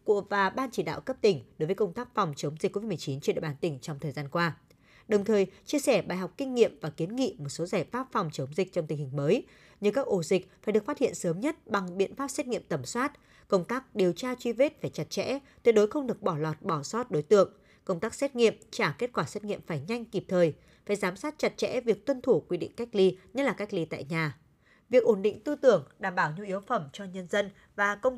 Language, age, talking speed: Vietnamese, 20-39, 270 wpm